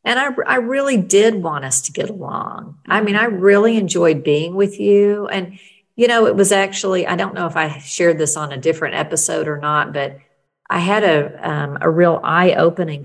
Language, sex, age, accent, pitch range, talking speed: English, female, 50-69, American, 150-190 Hz, 200 wpm